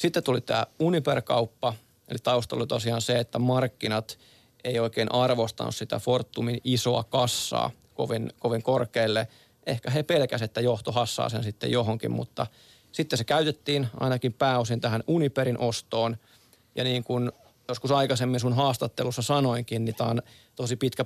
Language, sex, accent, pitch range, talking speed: Finnish, male, native, 115-125 Hz, 150 wpm